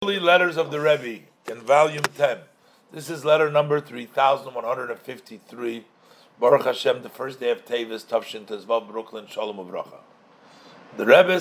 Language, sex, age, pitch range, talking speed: English, male, 50-69, 125-175 Hz, 130 wpm